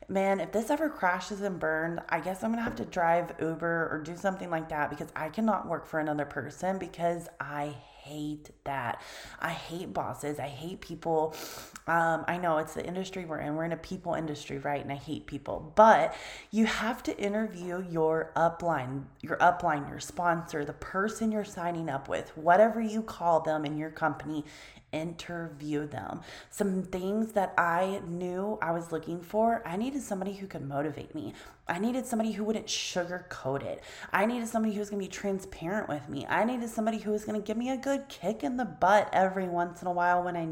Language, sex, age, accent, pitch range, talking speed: English, female, 20-39, American, 160-205 Hz, 205 wpm